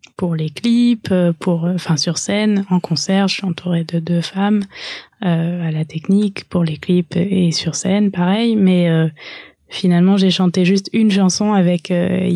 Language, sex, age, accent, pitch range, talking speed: French, female, 20-39, French, 165-190 Hz, 175 wpm